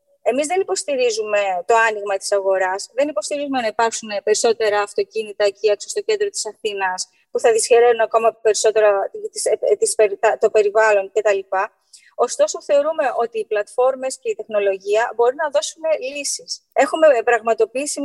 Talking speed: 135 wpm